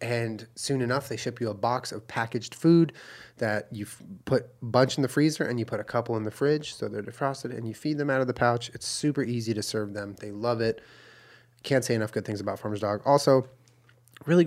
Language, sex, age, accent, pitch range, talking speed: English, male, 20-39, American, 110-130 Hz, 235 wpm